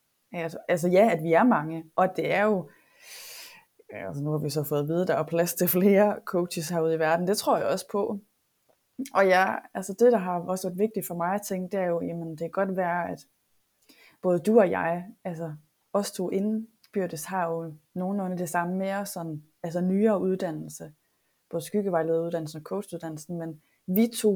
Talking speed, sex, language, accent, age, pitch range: 200 wpm, female, Danish, native, 20-39, 165-200 Hz